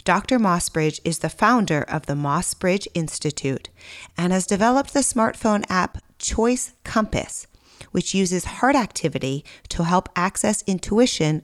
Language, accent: English, American